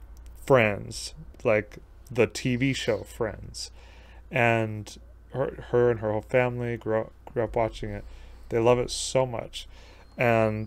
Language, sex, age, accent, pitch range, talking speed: English, male, 30-49, American, 95-130 Hz, 140 wpm